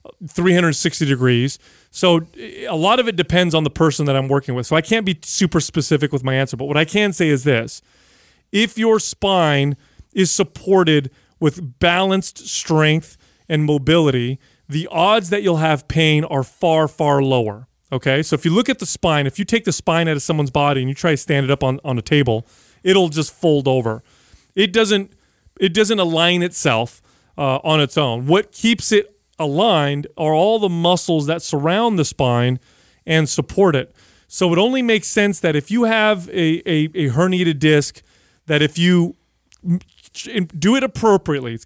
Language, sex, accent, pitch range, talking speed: English, male, American, 140-190 Hz, 185 wpm